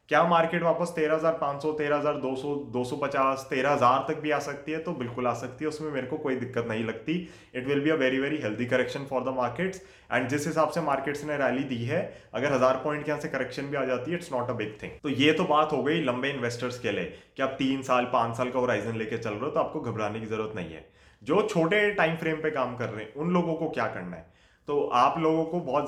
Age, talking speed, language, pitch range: 30-49, 270 wpm, Hindi, 120-155 Hz